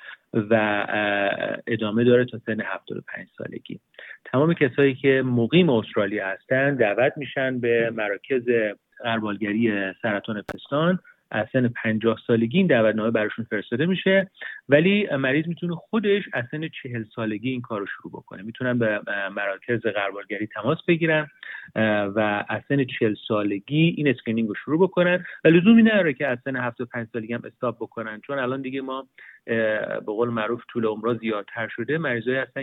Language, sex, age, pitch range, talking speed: Persian, male, 30-49, 110-140 Hz, 145 wpm